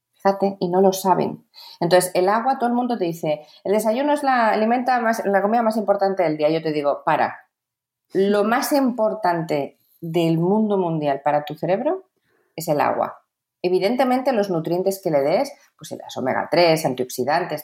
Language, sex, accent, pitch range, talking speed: Spanish, female, Spanish, 155-200 Hz, 175 wpm